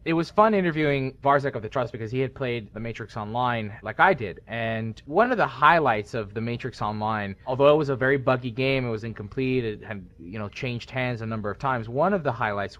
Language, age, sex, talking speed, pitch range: English, 30-49, male, 230 wpm, 110-135 Hz